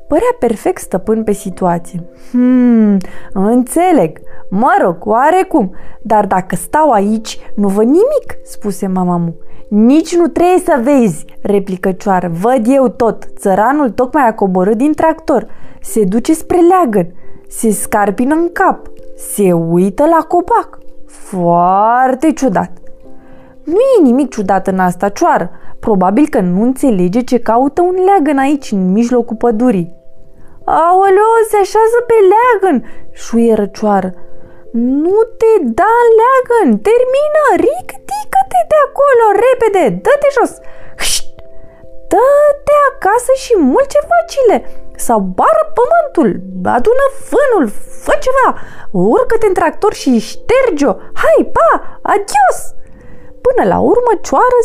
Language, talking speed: Romanian, 125 wpm